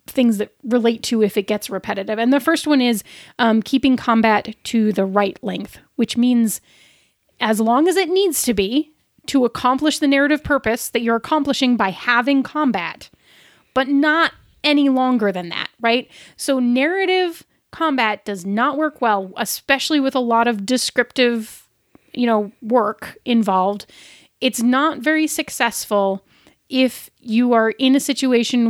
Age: 30-49